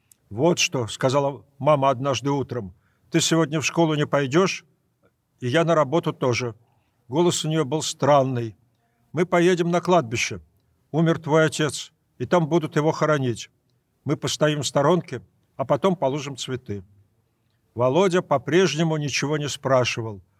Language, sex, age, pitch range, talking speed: Russian, male, 60-79, 130-165 Hz, 140 wpm